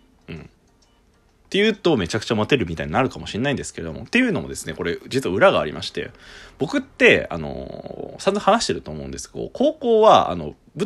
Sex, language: male, Japanese